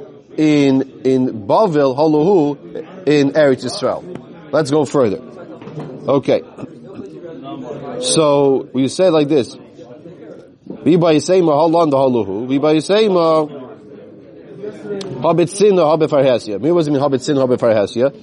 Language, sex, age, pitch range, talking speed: English, male, 30-49, 130-155 Hz, 55 wpm